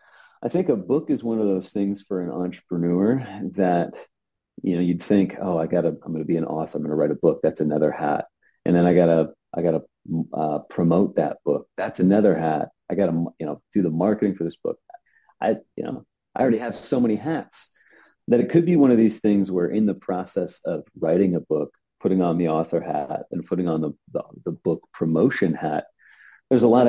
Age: 40-59